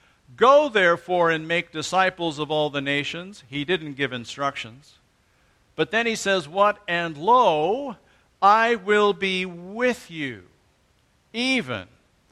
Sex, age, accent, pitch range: male, 50-69, American, 155-205 Hz